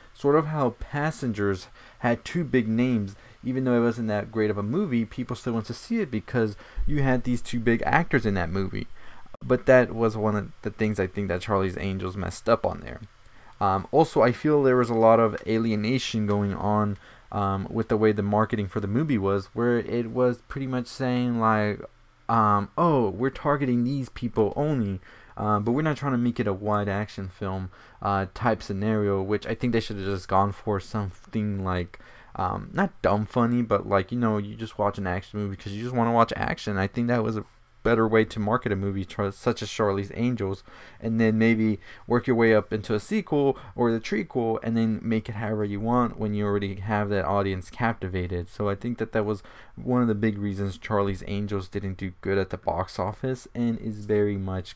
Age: 20-39